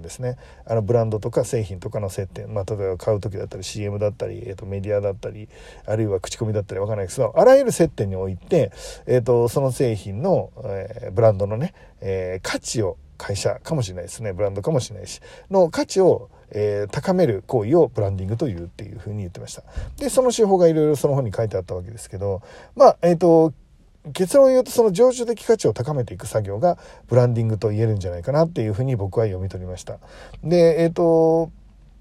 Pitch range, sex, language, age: 100-150 Hz, male, Japanese, 40-59